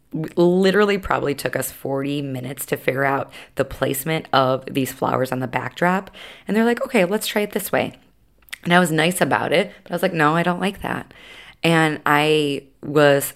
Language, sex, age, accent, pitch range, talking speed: English, female, 20-39, American, 140-175 Hz, 200 wpm